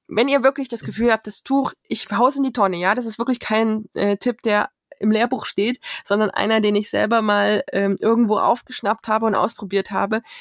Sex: female